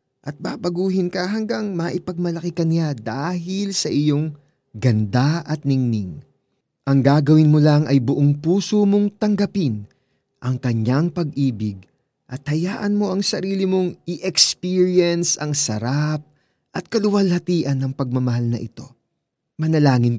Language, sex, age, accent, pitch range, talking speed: Filipino, male, 20-39, native, 130-170 Hz, 120 wpm